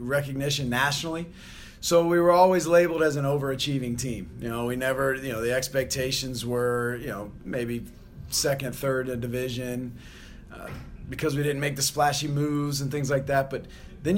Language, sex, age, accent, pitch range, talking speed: English, male, 40-59, American, 120-145 Hz, 175 wpm